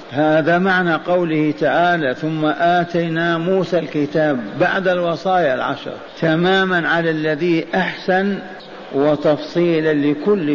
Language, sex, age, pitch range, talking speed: Arabic, male, 50-69, 150-175 Hz, 95 wpm